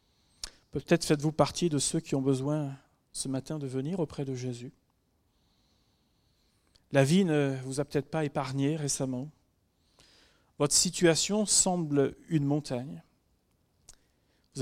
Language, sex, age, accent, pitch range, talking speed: French, male, 40-59, French, 130-170 Hz, 125 wpm